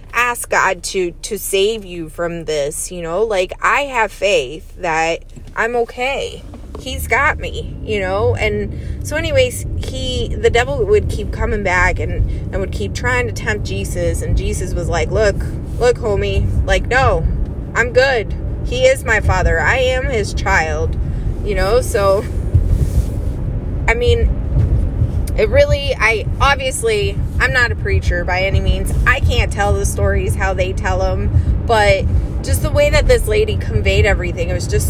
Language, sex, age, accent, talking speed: English, female, 20-39, American, 165 wpm